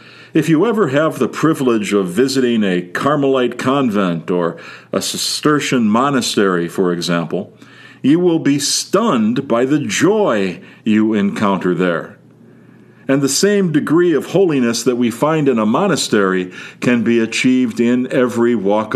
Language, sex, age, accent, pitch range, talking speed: English, male, 50-69, American, 95-135 Hz, 140 wpm